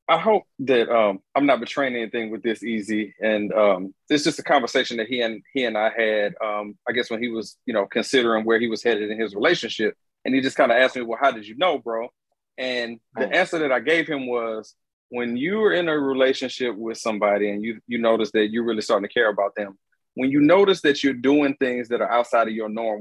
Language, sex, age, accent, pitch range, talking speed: English, male, 30-49, American, 115-150 Hz, 245 wpm